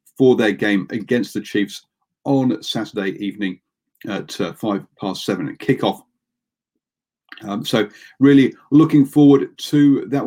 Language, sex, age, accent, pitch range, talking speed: English, male, 40-59, British, 105-140 Hz, 130 wpm